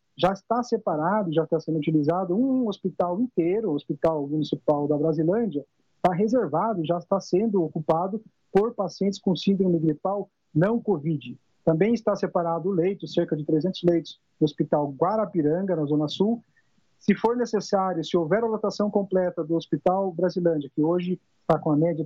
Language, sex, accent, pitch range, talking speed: Portuguese, male, Brazilian, 165-210 Hz, 160 wpm